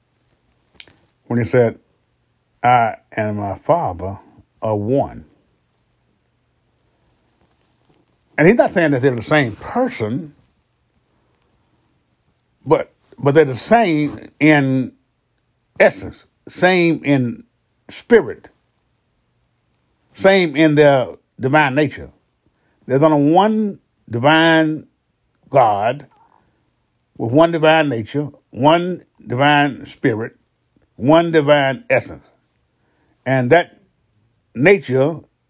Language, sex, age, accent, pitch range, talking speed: English, male, 50-69, American, 120-160 Hz, 85 wpm